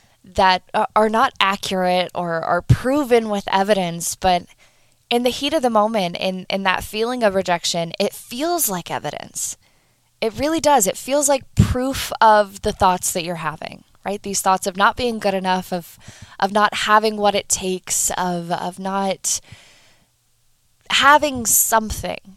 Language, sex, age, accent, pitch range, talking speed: English, female, 10-29, American, 185-240 Hz, 160 wpm